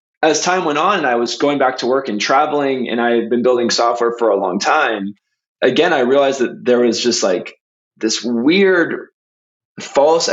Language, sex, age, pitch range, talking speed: English, male, 20-39, 115-145 Hz, 200 wpm